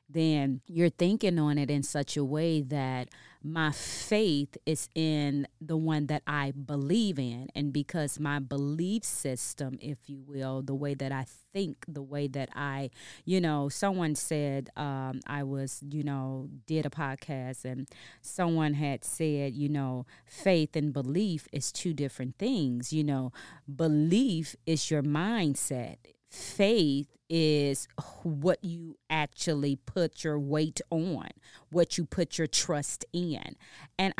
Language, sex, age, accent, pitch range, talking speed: English, female, 30-49, American, 140-165 Hz, 145 wpm